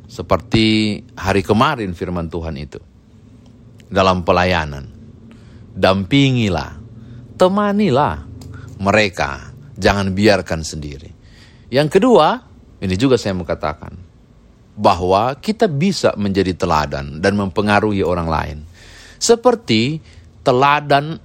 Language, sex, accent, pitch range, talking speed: Indonesian, male, native, 95-140 Hz, 90 wpm